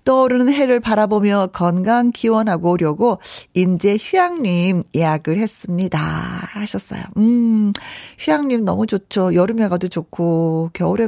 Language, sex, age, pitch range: Korean, female, 40-59, 175-240 Hz